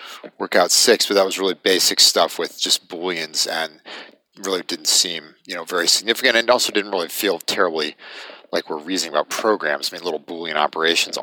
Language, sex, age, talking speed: English, male, 40-59, 185 wpm